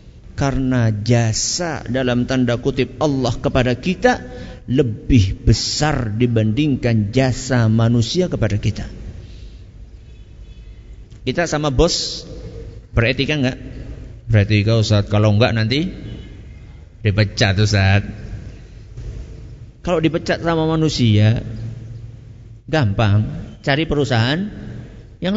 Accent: native